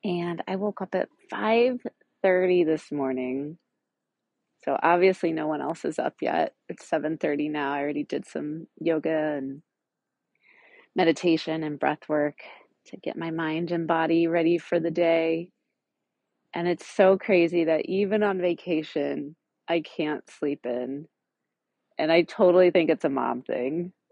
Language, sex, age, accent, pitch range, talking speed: English, female, 30-49, American, 160-200 Hz, 150 wpm